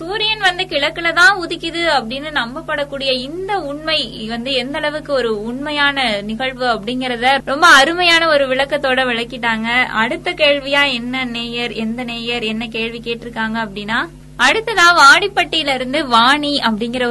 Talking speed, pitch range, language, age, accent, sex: 115 wpm, 240-305 Hz, Tamil, 20-39, native, female